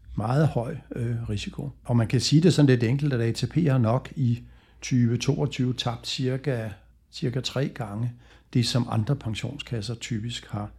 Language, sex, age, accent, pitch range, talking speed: Danish, male, 60-79, native, 115-140 Hz, 155 wpm